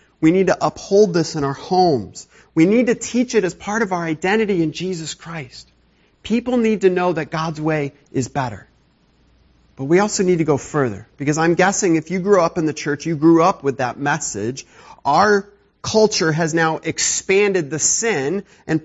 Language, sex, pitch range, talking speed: English, male, 110-170 Hz, 195 wpm